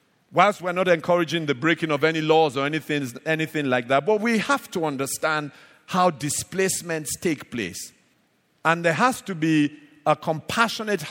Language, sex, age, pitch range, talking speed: English, male, 50-69, 120-165 Hz, 160 wpm